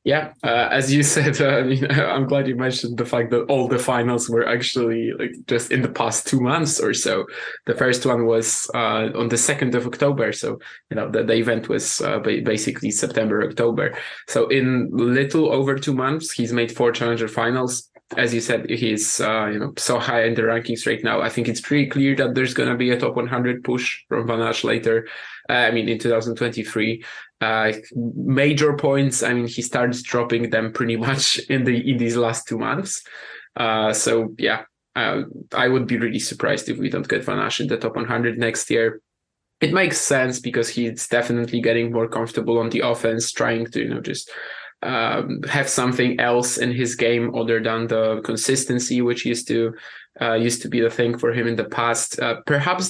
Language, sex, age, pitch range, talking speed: English, male, 20-39, 115-130 Hz, 200 wpm